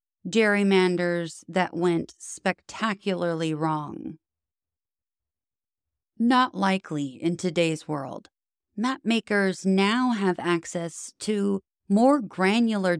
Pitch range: 170-210 Hz